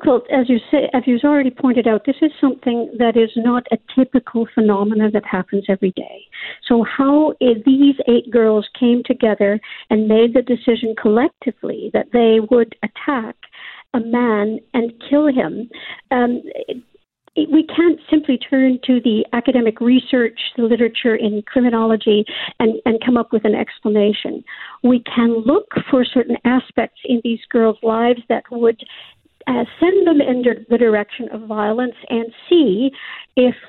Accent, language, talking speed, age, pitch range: American, English, 155 wpm, 60-79, 225-265 Hz